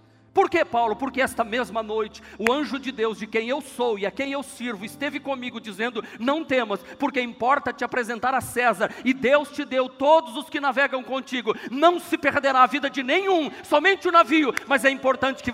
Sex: male